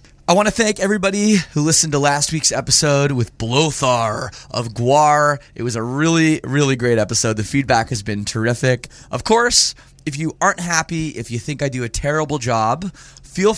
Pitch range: 115-155 Hz